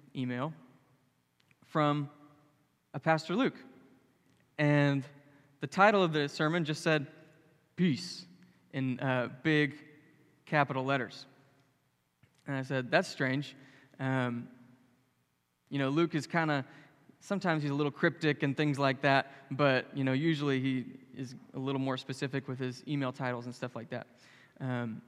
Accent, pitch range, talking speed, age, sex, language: American, 130-155 Hz, 140 wpm, 20-39, male, English